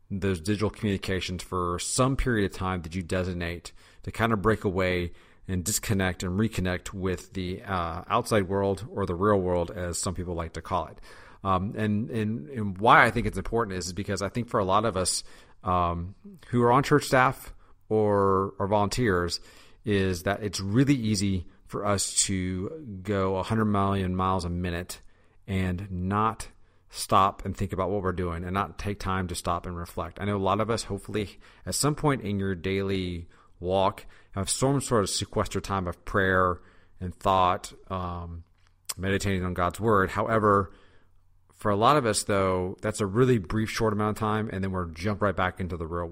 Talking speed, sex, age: 195 wpm, male, 40-59